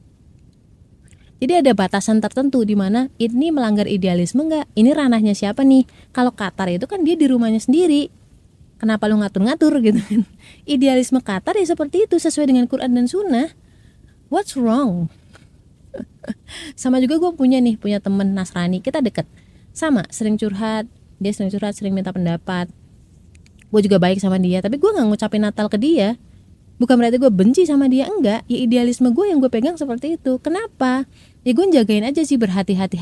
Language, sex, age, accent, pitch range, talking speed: Indonesian, female, 30-49, native, 200-270 Hz, 165 wpm